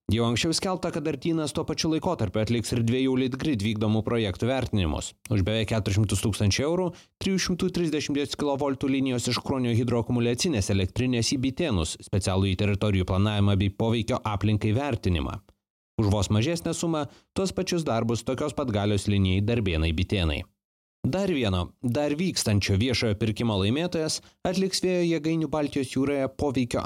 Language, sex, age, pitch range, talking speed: English, male, 30-49, 105-150 Hz, 145 wpm